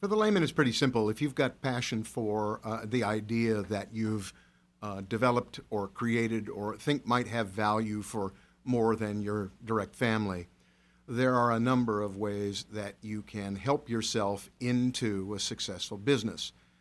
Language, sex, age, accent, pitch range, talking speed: English, male, 50-69, American, 105-130 Hz, 165 wpm